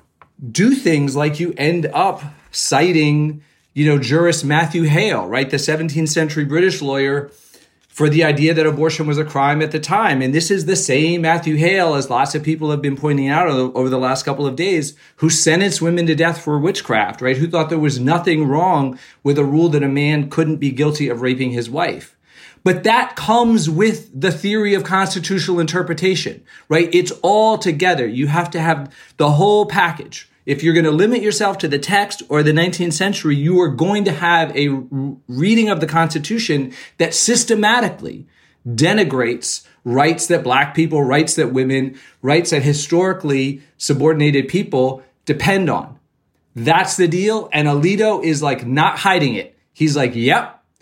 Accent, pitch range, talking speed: American, 140-175 Hz, 175 wpm